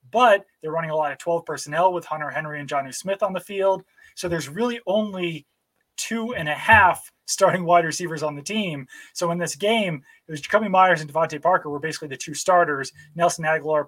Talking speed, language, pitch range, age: 210 wpm, English, 150-185 Hz, 20-39